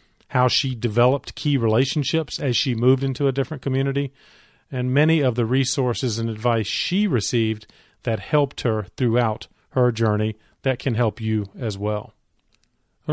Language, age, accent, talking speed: English, 40-59, American, 155 wpm